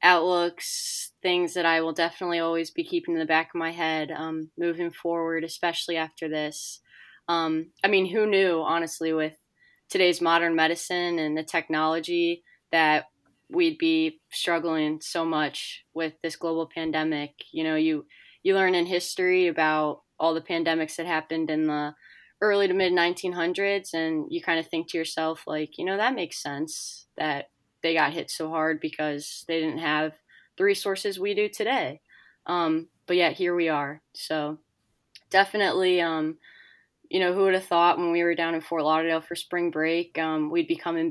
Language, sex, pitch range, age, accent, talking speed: English, female, 160-175 Hz, 20-39, American, 175 wpm